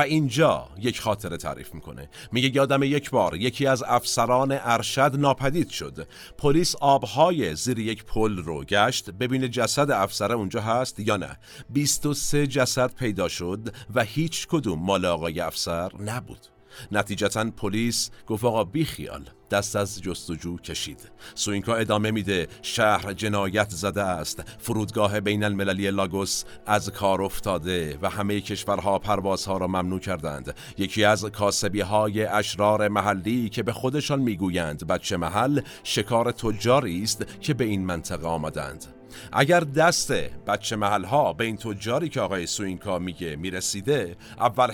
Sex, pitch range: male, 100-130 Hz